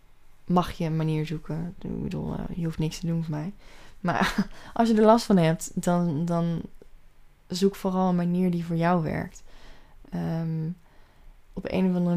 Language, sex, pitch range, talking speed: Dutch, female, 165-185 Hz, 175 wpm